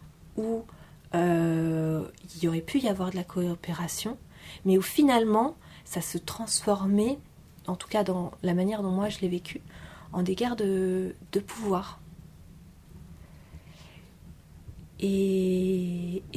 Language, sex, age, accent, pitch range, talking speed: French, female, 30-49, French, 170-205 Hz, 130 wpm